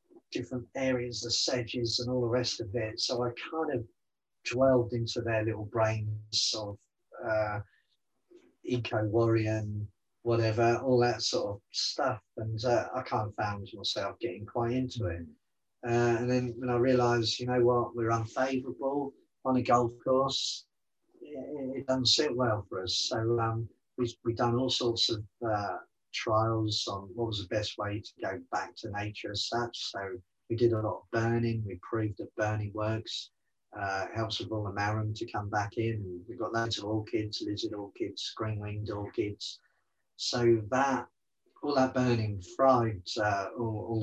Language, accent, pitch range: English, British, 105-120 Hz